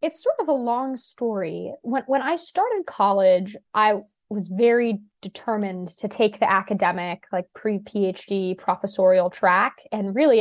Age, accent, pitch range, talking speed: 20-39, American, 185-215 Hz, 145 wpm